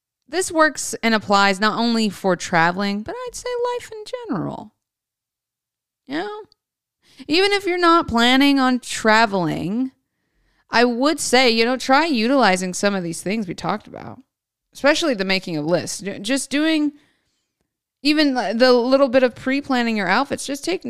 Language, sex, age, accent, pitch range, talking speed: English, female, 20-39, American, 195-270 Hz, 155 wpm